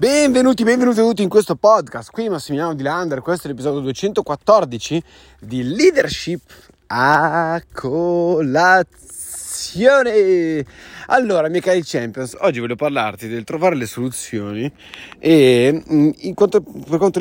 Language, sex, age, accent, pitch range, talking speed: Italian, male, 30-49, native, 115-170 Hz, 115 wpm